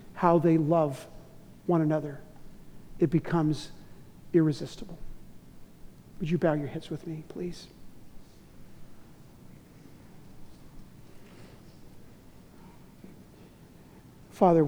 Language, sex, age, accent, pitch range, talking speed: English, male, 50-69, American, 165-190 Hz, 70 wpm